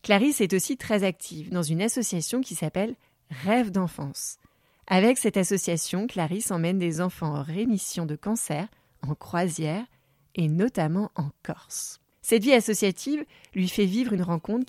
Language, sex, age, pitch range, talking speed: French, female, 30-49, 165-215 Hz, 150 wpm